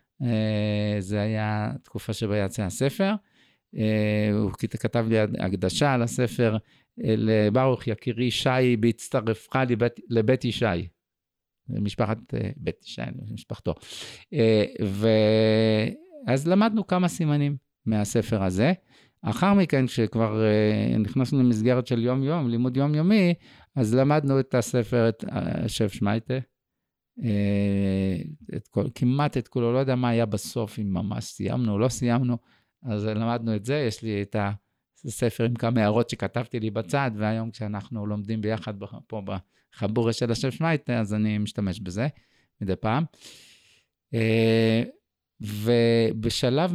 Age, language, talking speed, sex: 50-69, Hebrew, 120 wpm, male